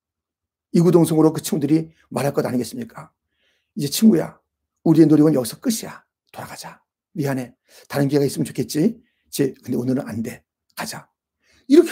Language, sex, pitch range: Korean, male, 150-230 Hz